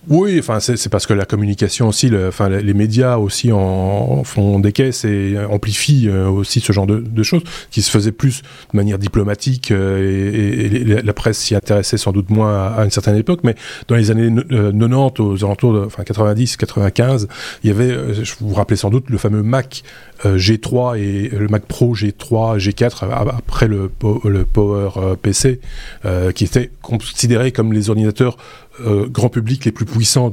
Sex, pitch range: male, 100-125 Hz